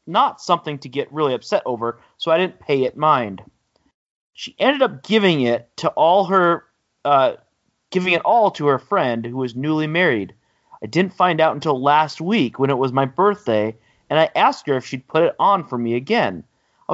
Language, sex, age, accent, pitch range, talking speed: English, male, 30-49, American, 135-200 Hz, 200 wpm